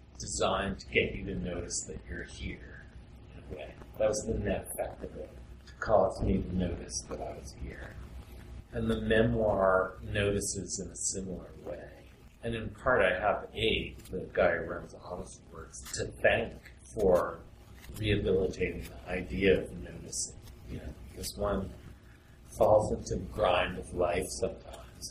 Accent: American